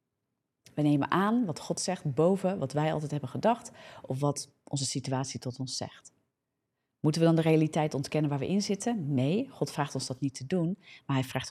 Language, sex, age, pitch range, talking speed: Dutch, female, 30-49, 135-170 Hz, 210 wpm